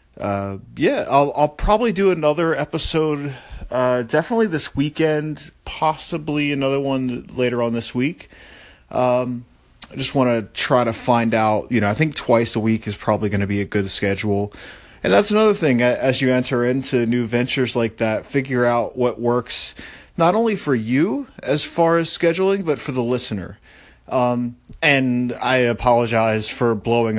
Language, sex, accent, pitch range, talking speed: English, male, American, 110-135 Hz, 170 wpm